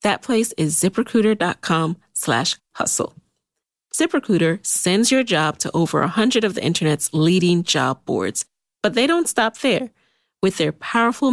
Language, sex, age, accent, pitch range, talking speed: English, female, 30-49, American, 160-225 Hz, 145 wpm